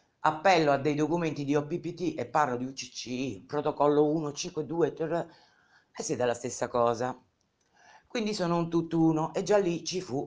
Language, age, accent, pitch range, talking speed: Italian, 50-69, native, 130-170 Hz, 150 wpm